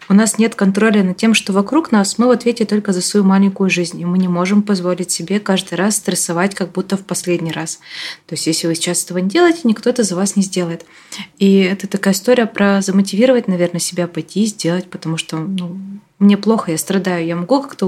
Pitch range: 180-215 Hz